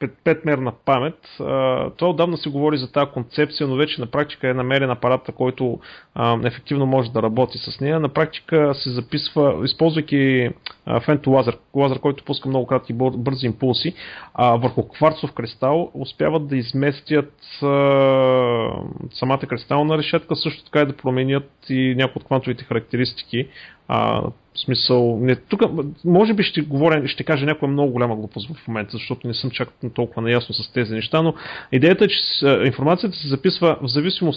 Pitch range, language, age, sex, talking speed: 125-155 Hz, Bulgarian, 30-49, male, 160 wpm